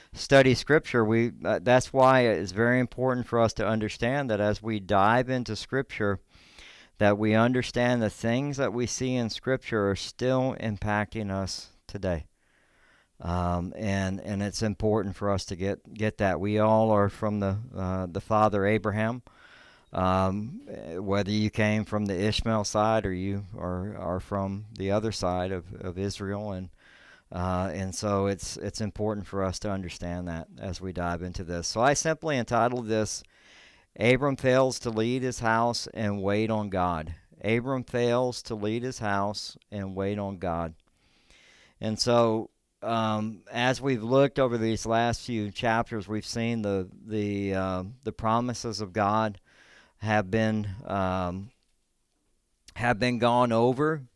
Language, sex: English, male